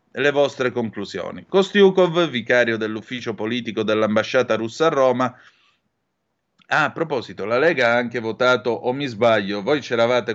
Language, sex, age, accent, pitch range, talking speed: Italian, male, 30-49, native, 110-145 Hz, 140 wpm